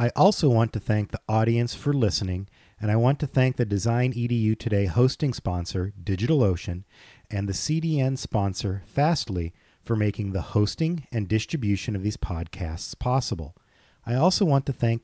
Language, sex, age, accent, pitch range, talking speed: English, male, 40-59, American, 95-130 Hz, 165 wpm